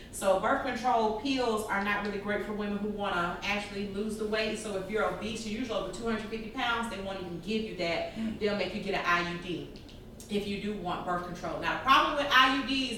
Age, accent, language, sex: 30-49, American, English, female